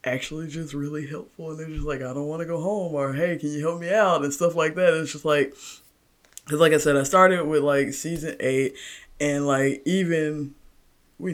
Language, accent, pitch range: English, American, 140-165 Hz